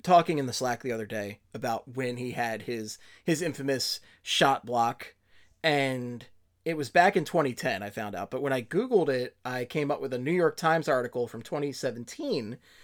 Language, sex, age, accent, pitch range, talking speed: English, male, 30-49, American, 120-170 Hz, 190 wpm